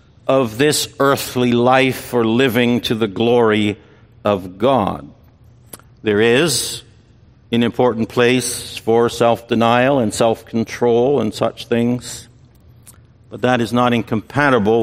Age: 60-79